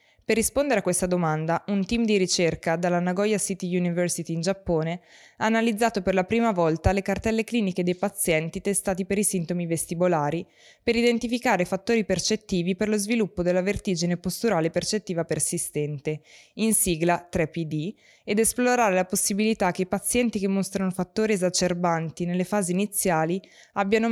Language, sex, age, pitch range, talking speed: Italian, female, 20-39, 170-210 Hz, 150 wpm